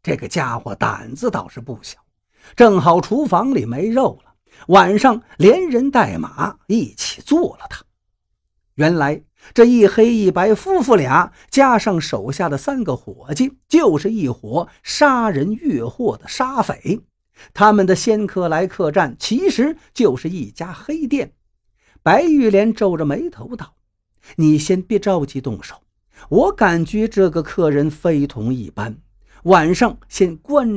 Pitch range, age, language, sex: 145-240 Hz, 50-69, Chinese, male